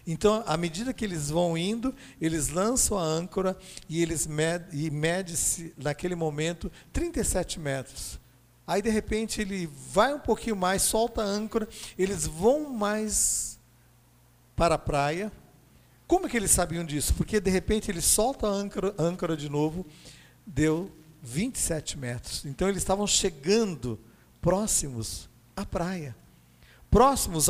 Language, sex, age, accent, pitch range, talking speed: Portuguese, male, 50-69, Brazilian, 160-225 Hz, 140 wpm